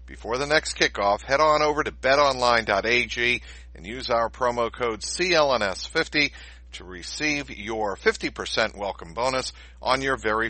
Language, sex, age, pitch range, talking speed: English, male, 50-69, 85-140 Hz, 135 wpm